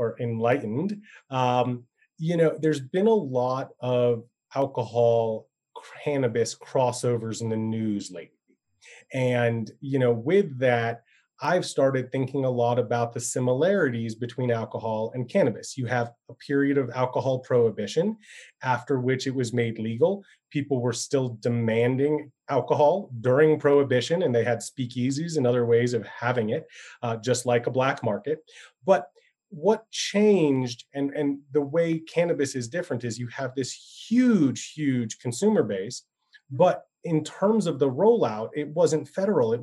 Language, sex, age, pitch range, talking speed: English, male, 30-49, 120-160 Hz, 150 wpm